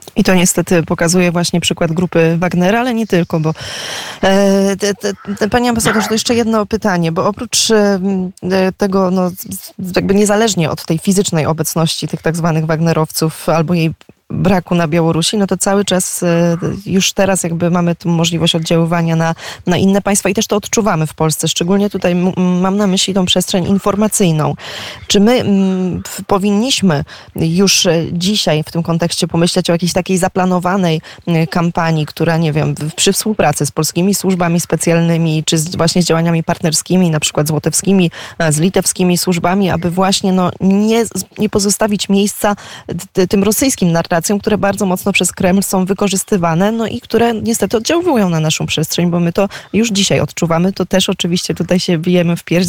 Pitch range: 165-200 Hz